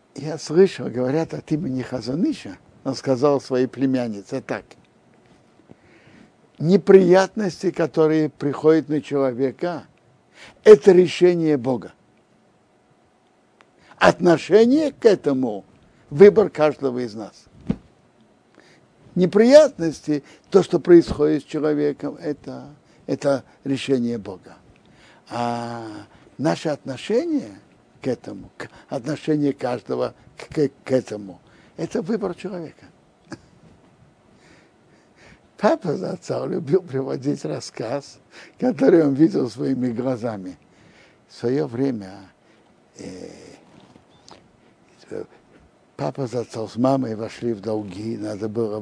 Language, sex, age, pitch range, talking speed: Russian, male, 60-79, 120-160 Hz, 90 wpm